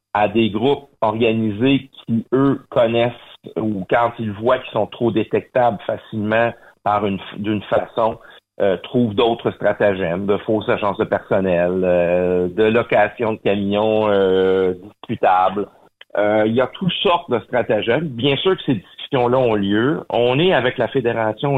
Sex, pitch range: male, 105-125 Hz